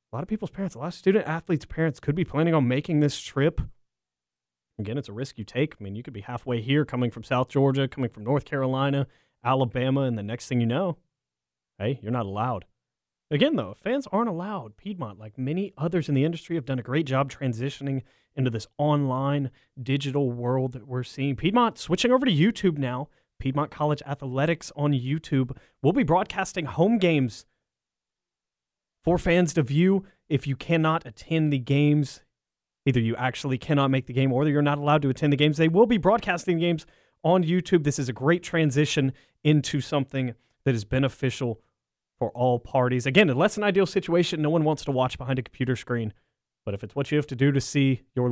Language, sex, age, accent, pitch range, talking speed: English, male, 30-49, American, 120-155 Hz, 200 wpm